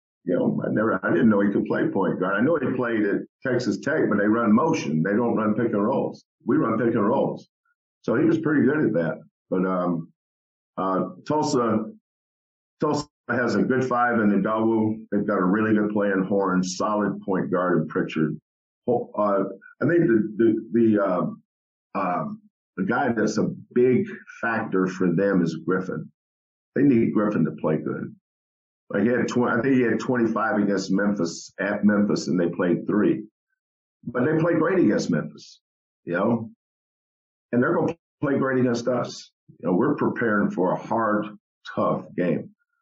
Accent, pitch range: American, 95-125 Hz